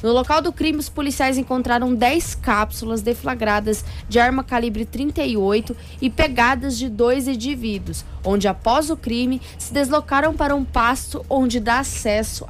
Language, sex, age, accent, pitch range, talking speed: Portuguese, female, 10-29, Brazilian, 220-280 Hz, 150 wpm